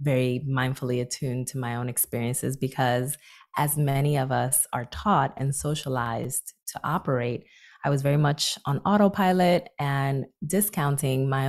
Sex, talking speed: female, 140 wpm